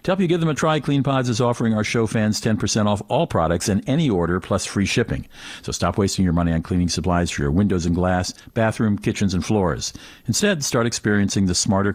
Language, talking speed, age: English, 230 wpm, 50-69